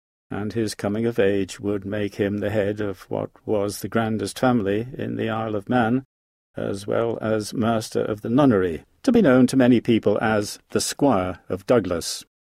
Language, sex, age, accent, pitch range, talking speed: English, male, 50-69, British, 100-140 Hz, 185 wpm